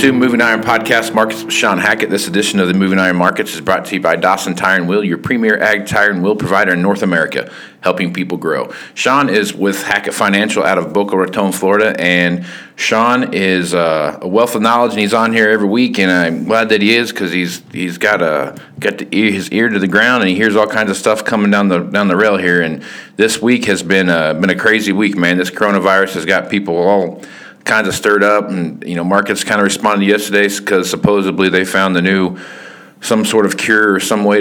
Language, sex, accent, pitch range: English, male, American, 90-105 Hz